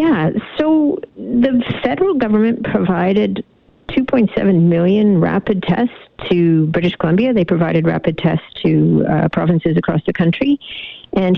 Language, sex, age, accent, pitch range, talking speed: English, female, 50-69, American, 170-225 Hz, 125 wpm